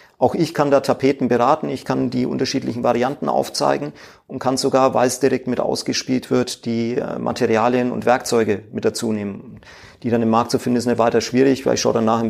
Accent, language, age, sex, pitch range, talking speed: German, German, 40-59, male, 115-135 Hz, 215 wpm